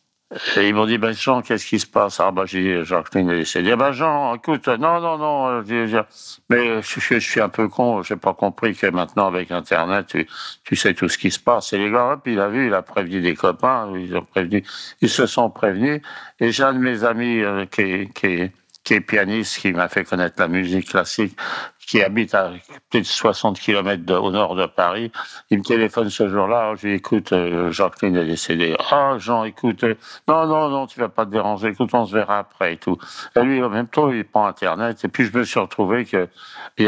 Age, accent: 60-79, French